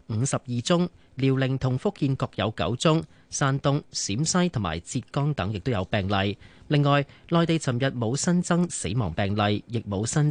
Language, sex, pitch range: Chinese, male, 105-145 Hz